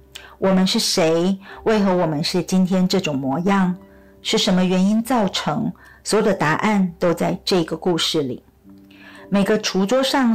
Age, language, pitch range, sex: 50-69, Chinese, 170-215 Hz, female